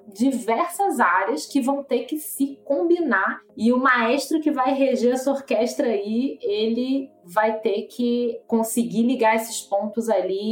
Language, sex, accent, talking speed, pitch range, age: Portuguese, female, Brazilian, 150 wpm, 185-230 Hz, 20-39